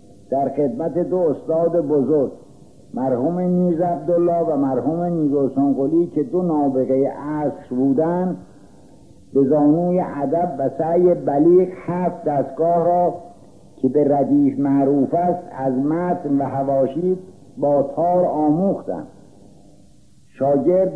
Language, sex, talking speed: Persian, male, 110 wpm